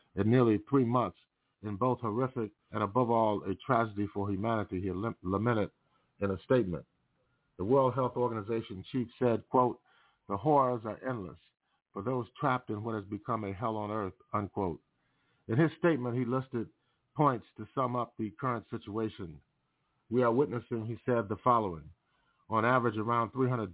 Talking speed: 165 wpm